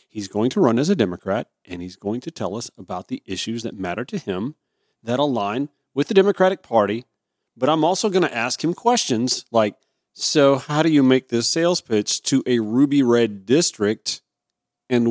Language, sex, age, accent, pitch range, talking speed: English, male, 40-59, American, 110-150 Hz, 195 wpm